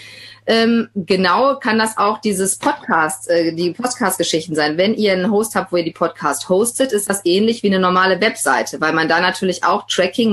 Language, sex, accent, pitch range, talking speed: German, female, German, 175-230 Hz, 185 wpm